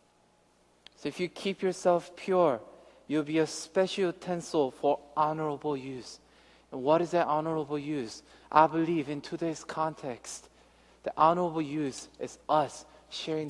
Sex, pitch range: male, 145-180 Hz